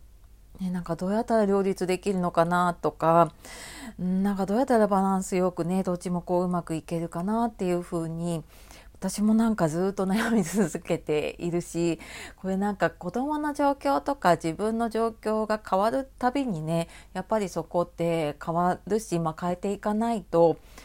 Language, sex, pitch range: Japanese, female, 165-215 Hz